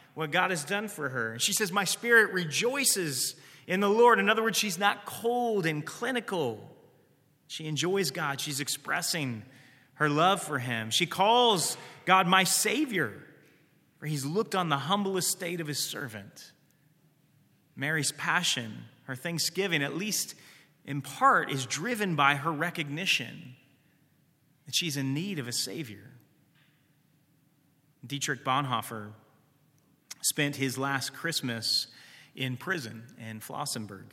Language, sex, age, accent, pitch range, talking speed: English, male, 30-49, American, 130-170 Hz, 135 wpm